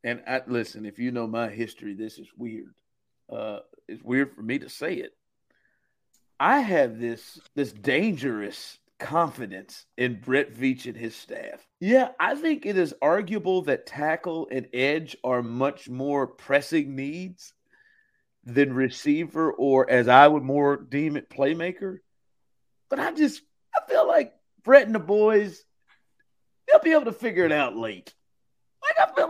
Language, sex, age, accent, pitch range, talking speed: English, male, 50-69, American, 135-220 Hz, 155 wpm